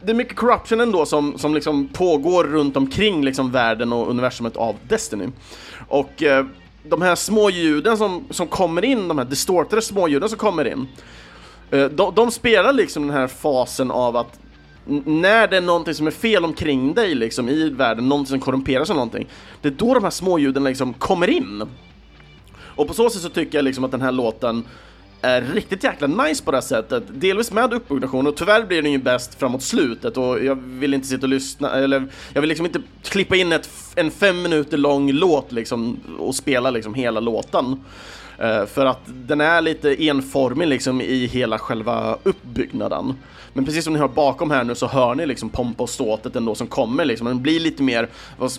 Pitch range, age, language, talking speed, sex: 125-165 Hz, 30-49, Swedish, 200 wpm, male